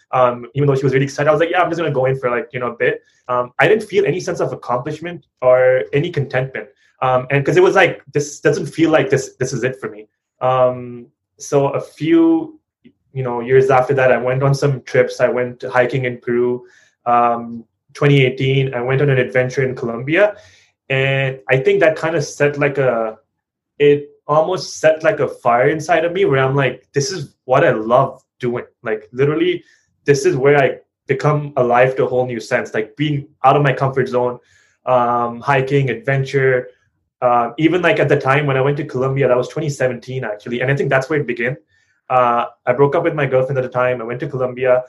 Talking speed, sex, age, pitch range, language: 220 wpm, male, 20-39, 125-150 Hz, English